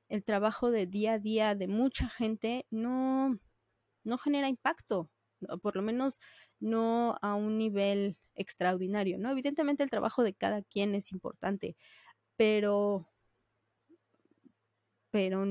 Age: 20-39